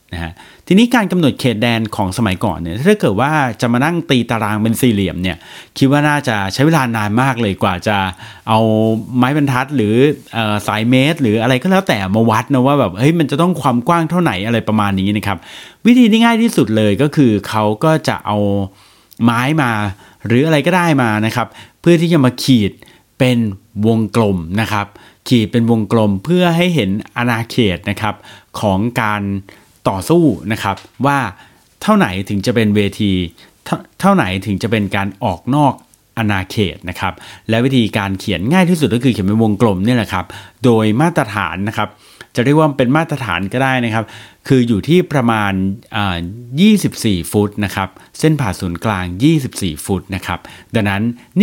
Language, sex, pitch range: Thai, male, 100-135 Hz